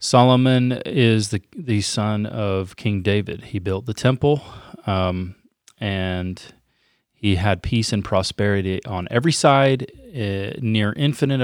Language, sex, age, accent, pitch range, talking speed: English, male, 30-49, American, 95-120 Hz, 130 wpm